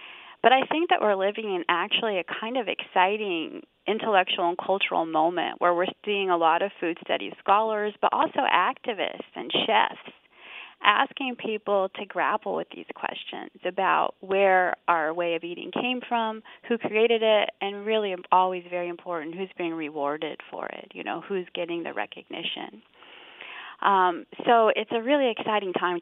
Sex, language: female, English